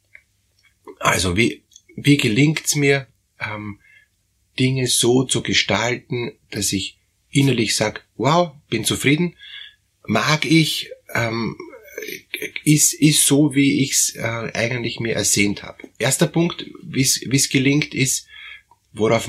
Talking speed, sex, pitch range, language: 120 wpm, male, 100-145 Hz, German